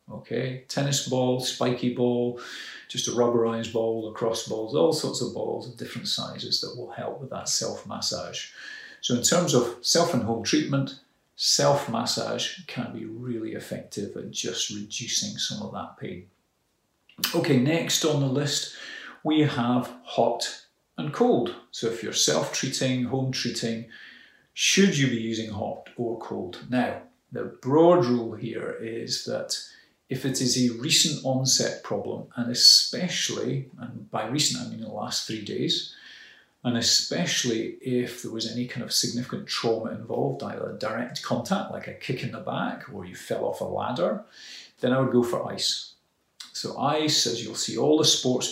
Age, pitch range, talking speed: 40-59, 115-135 Hz, 160 wpm